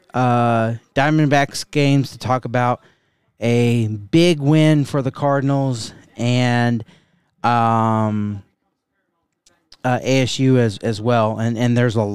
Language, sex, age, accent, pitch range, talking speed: English, male, 30-49, American, 115-135 Hz, 115 wpm